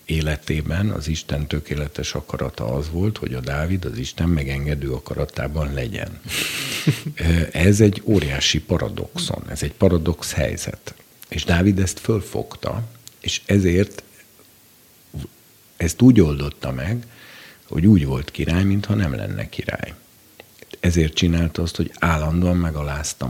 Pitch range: 75-95 Hz